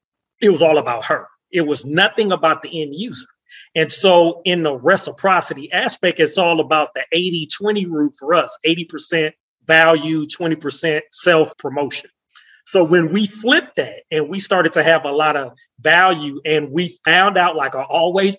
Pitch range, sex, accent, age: 150-180 Hz, male, American, 30-49